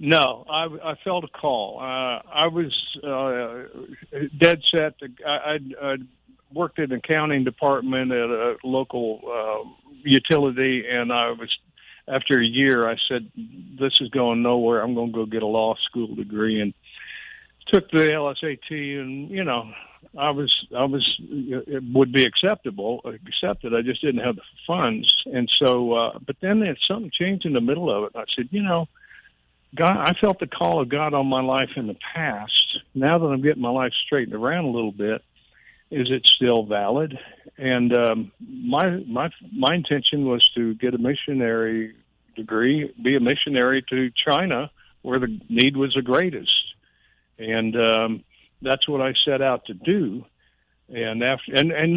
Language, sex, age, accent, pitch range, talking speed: English, male, 60-79, American, 120-150 Hz, 170 wpm